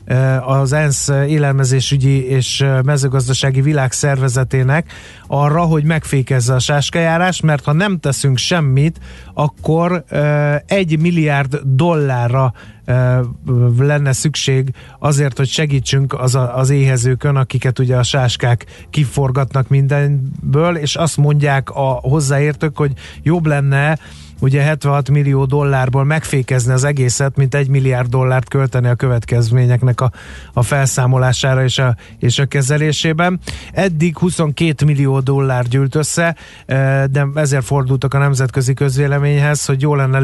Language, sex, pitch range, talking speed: Hungarian, male, 130-145 Hz, 120 wpm